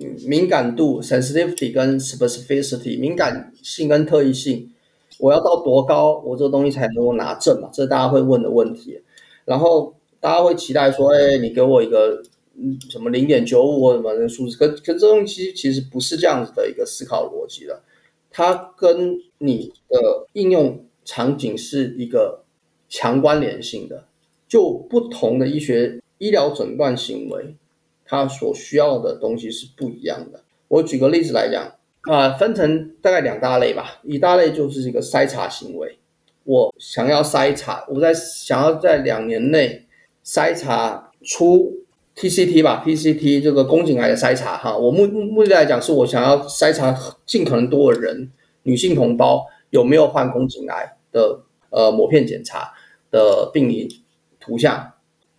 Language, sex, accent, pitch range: Chinese, male, native, 135-210 Hz